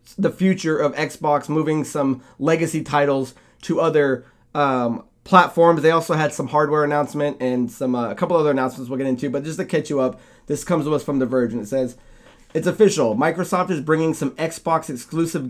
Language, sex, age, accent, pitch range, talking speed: English, male, 20-39, American, 135-165 Hz, 200 wpm